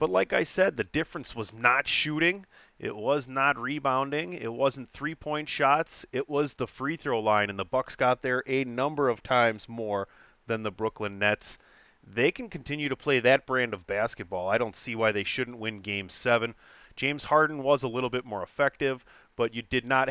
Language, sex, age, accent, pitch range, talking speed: English, male, 30-49, American, 110-140 Hz, 195 wpm